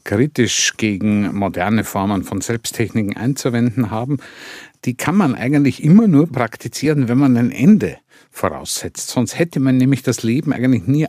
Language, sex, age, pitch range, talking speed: German, male, 50-69, 110-140 Hz, 150 wpm